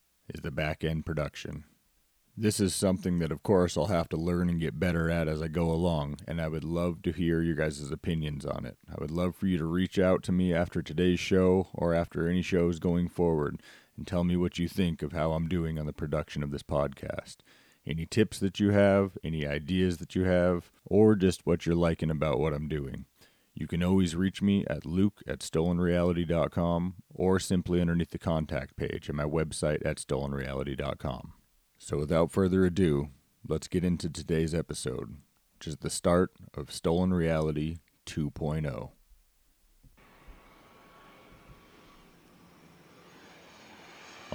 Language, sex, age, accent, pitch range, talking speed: English, male, 30-49, American, 80-90 Hz, 170 wpm